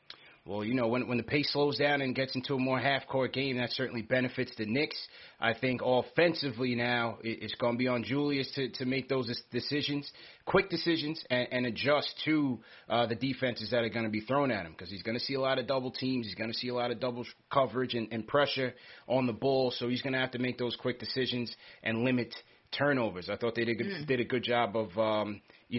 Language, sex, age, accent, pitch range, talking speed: English, male, 30-49, American, 110-130 Hz, 235 wpm